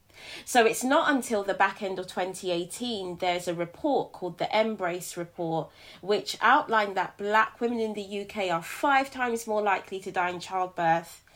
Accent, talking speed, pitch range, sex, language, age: British, 175 wpm, 180-230 Hz, female, English, 20-39